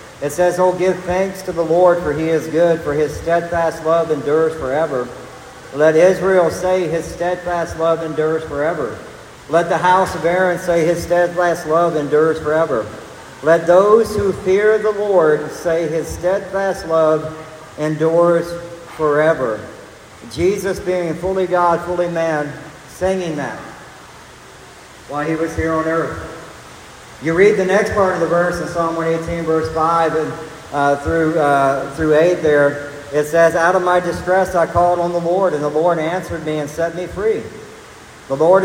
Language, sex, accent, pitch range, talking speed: English, male, American, 155-175 Hz, 165 wpm